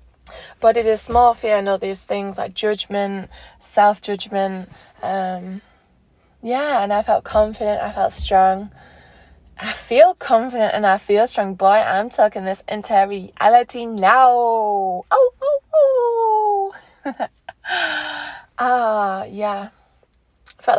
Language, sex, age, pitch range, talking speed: English, female, 20-39, 195-225 Hz, 120 wpm